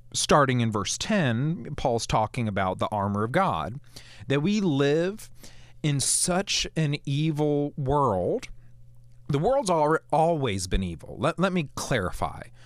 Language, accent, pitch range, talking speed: English, American, 115-145 Hz, 135 wpm